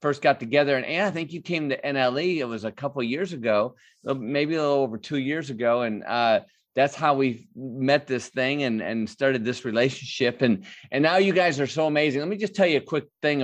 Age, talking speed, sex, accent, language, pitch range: 30-49, 235 wpm, male, American, English, 115-140 Hz